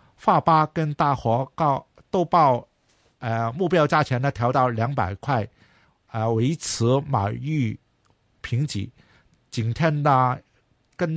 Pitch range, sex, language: 115-155 Hz, male, Chinese